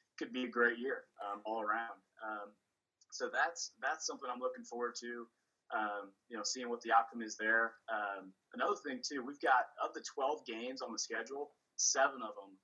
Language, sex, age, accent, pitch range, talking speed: English, male, 20-39, American, 110-125 Hz, 200 wpm